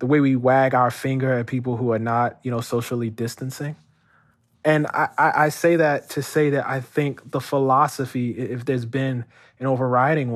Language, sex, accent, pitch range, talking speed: English, male, American, 115-145 Hz, 190 wpm